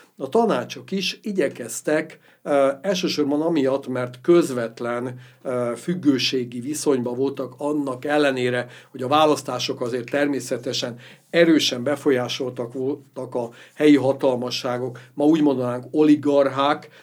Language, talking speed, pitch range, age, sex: Hungarian, 100 wpm, 125-150 Hz, 60-79, male